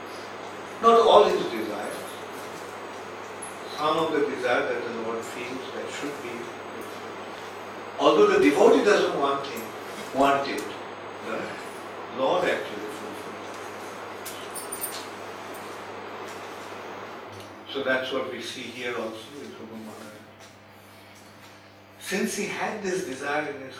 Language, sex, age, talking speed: English, male, 50-69, 110 wpm